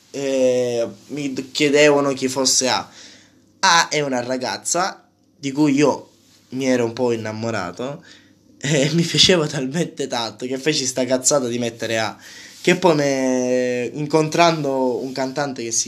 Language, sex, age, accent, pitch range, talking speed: Italian, male, 10-29, native, 120-145 Hz, 145 wpm